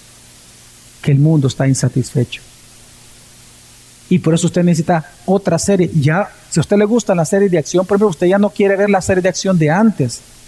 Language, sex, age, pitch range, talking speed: Spanish, male, 50-69, 125-180 Hz, 200 wpm